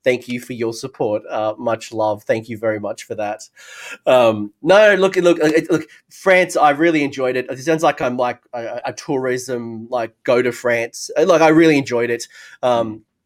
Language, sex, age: English, male, 30-49